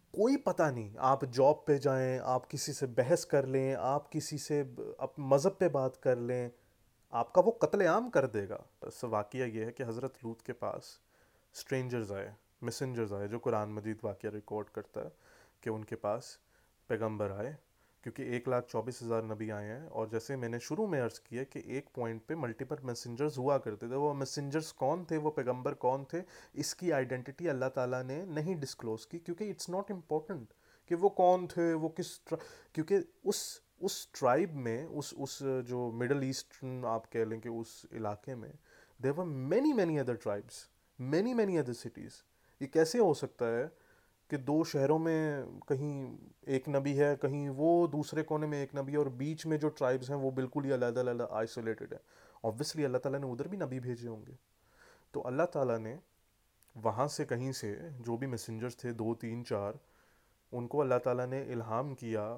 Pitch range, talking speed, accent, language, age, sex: 115-150 Hz, 150 wpm, Indian, English, 30-49, male